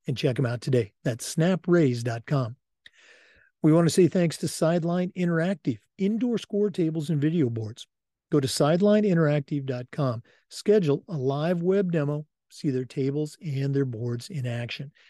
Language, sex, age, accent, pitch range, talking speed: English, male, 50-69, American, 130-175 Hz, 145 wpm